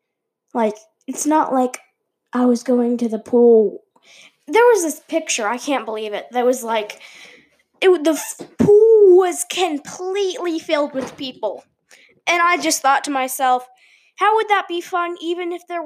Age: 10-29